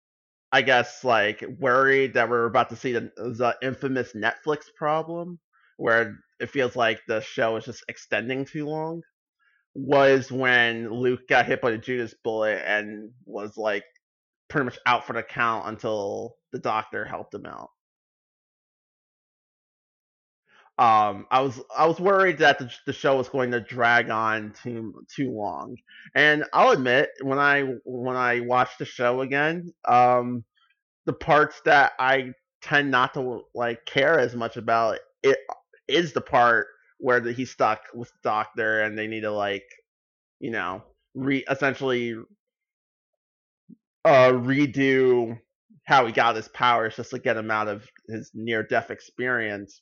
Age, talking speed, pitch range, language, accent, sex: 30-49, 150 wpm, 115-140 Hz, English, American, male